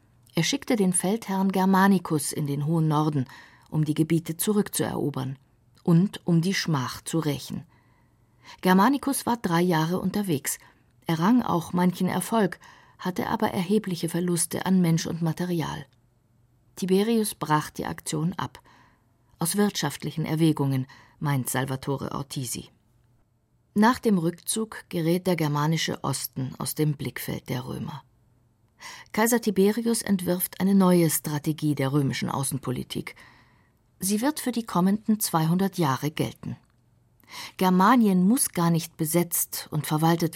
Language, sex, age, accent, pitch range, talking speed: German, female, 50-69, German, 125-190 Hz, 125 wpm